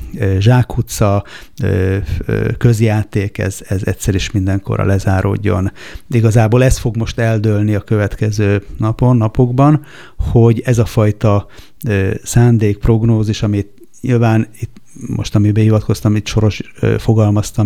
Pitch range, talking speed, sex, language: 105-125 Hz, 110 wpm, male, Hungarian